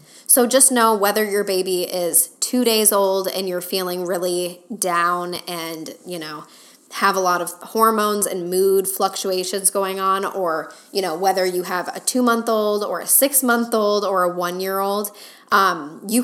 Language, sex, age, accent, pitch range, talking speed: English, female, 10-29, American, 180-220 Hz, 165 wpm